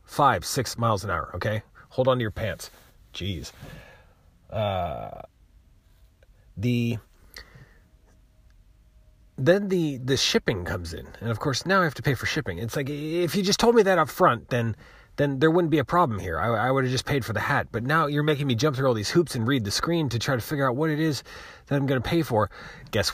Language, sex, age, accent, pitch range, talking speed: English, male, 30-49, American, 100-145 Hz, 220 wpm